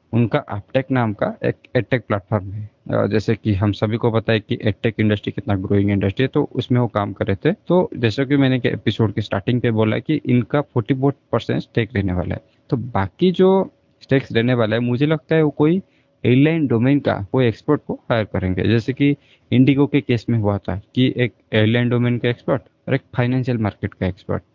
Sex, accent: male, native